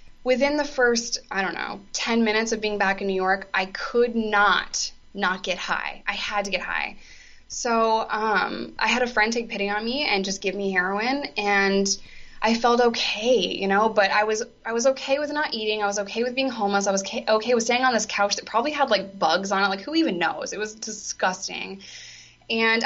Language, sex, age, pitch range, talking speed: English, female, 20-39, 195-235 Hz, 220 wpm